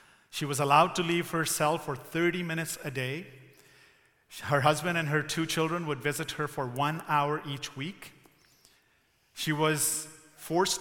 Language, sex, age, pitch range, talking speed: English, male, 40-59, 125-155 Hz, 160 wpm